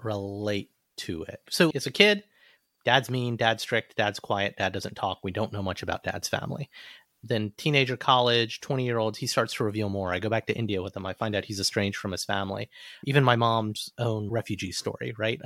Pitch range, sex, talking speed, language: 105-135 Hz, male, 210 wpm, English